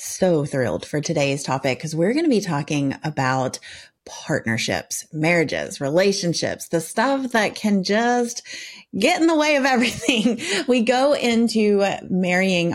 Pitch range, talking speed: 150-185 Hz, 140 wpm